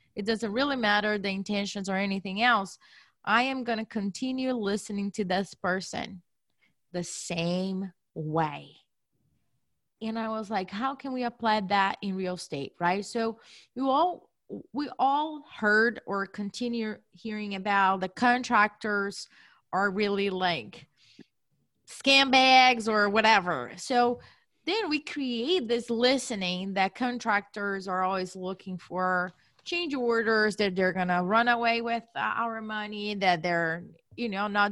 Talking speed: 140 wpm